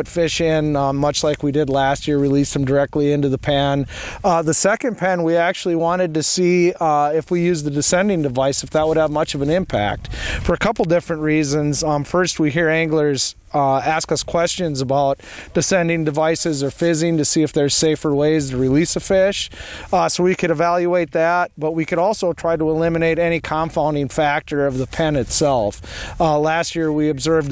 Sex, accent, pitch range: male, American, 145-170 Hz